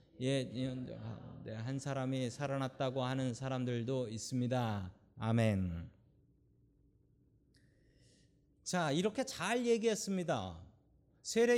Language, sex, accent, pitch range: Korean, male, native, 125-190 Hz